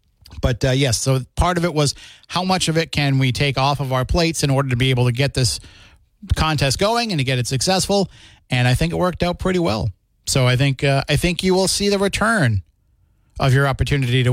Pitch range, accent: 115-160 Hz, American